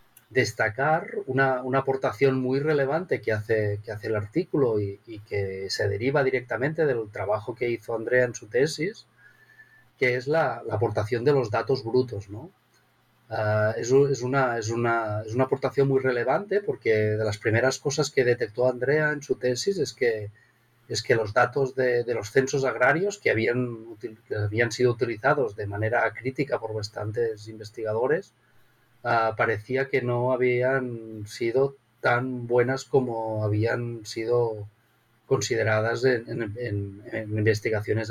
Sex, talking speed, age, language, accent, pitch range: male, 150 wpm, 30-49, English, Spanish, 110-130 Hz